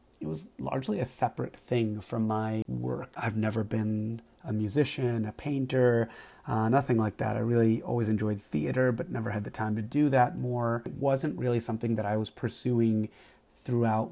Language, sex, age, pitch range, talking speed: English, male, 30-49, 110-130 Hz, 185 wpm